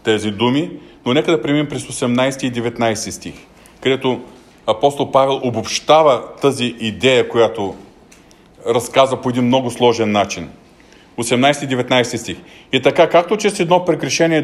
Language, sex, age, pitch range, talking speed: Bulgarian, male, 40-59, 120-170 Hz, 140 wpm